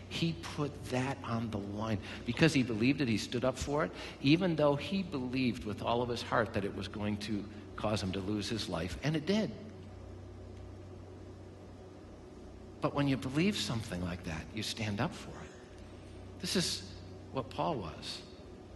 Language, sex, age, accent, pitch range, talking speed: English, male, 50-69, American, 95-130 Hz, 175 wpm